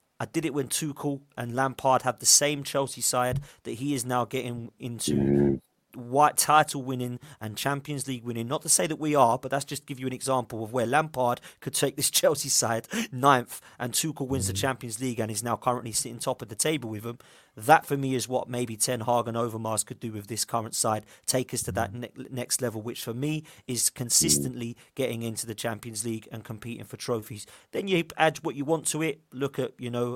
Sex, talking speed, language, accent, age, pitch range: male, 225 wpm, English, British, 30-49, 120-145 Hz